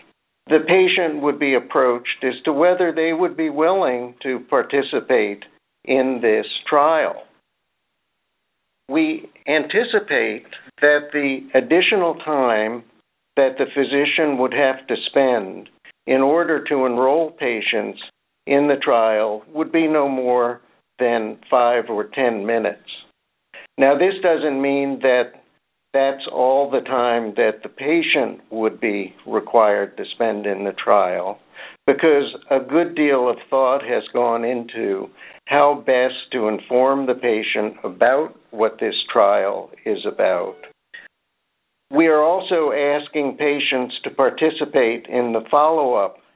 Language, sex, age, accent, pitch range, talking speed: English, male, 60-79, American, 125-155 Hz, 125 wpm